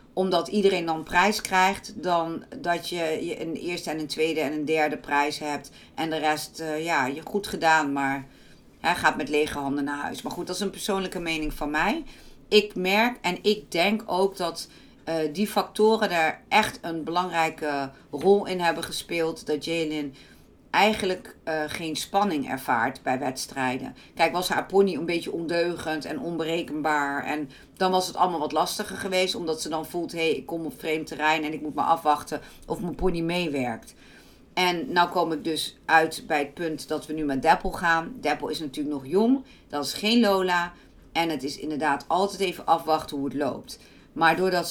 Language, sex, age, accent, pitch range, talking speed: Dutch, female, 50-69, Dutch, 150-185 Hz, 190 wpm